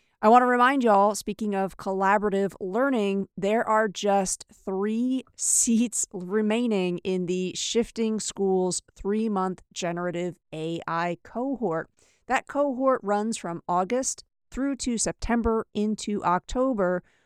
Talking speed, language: 120 wpm, English